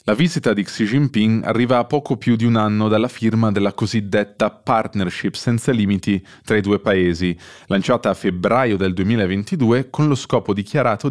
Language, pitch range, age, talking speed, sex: Italian, 95-125 Hz, 20-39, 175 wpm, male